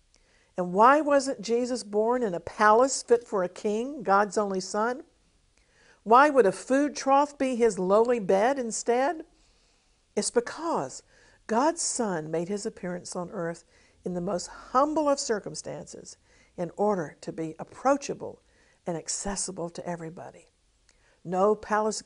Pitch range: 175-235 Hz